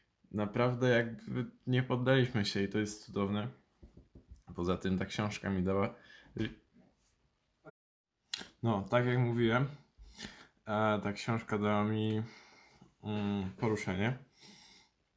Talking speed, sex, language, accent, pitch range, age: 95 wpm, male, Polish, native, 110-130 Hz, 20-39